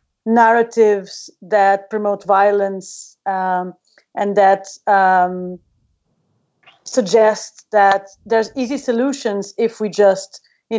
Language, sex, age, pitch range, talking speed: English, female, 30-49, 195-230 Hz, 95 wpm